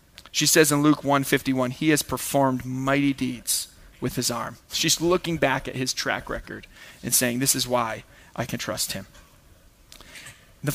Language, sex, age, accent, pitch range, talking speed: English, male, 30-49, American, 140-170 Hz, 180 wpm